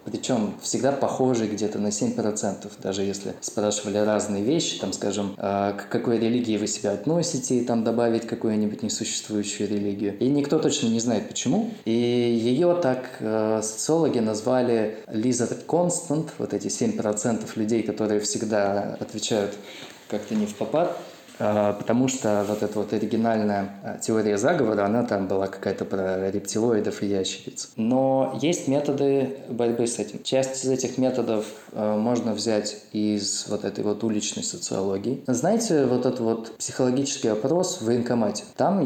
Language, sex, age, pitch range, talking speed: Russian, male, 20-39, 105-130 Hz, 140 wpm